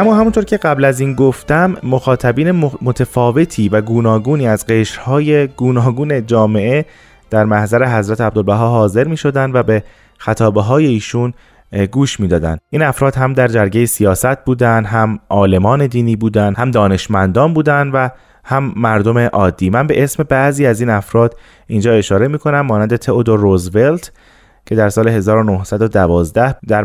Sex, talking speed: male, 140 wpm